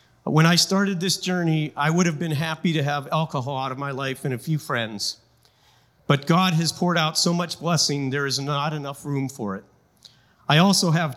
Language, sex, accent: English, male, American